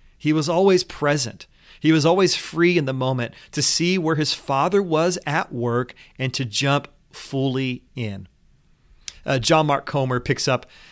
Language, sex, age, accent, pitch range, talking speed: English, male, 30-49, American, 125-155 Hz, 165 wpm